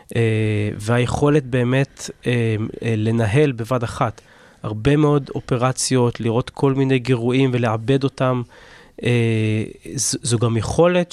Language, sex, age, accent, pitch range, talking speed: Hebrew, male, 20-39, native, 115-140 Hz, 90 wpm